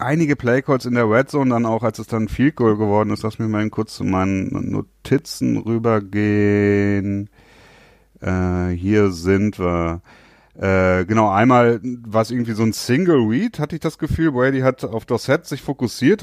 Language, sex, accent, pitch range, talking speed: German, male, German, 95-125 Hz, 180 wpm